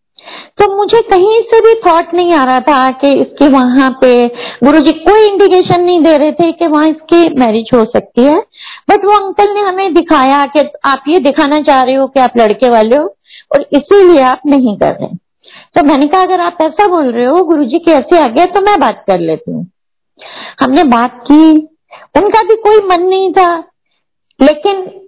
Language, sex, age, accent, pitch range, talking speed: Hindi, female, 50-69, native, 275-375 Hz, 200 wpm